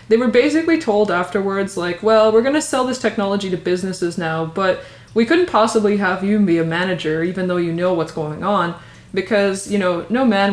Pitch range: 165-205 Hz